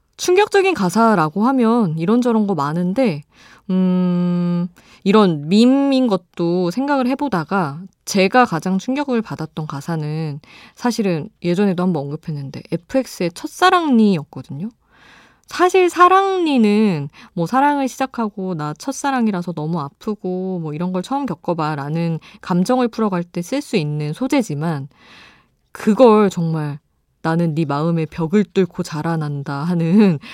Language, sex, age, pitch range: Korean, female, 20-39, 160-230 Hz